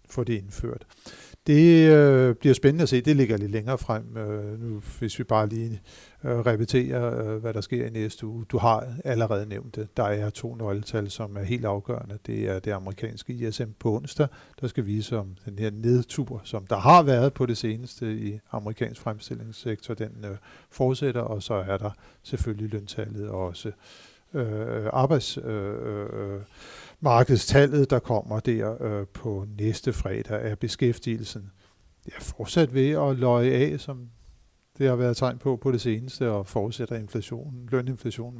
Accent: native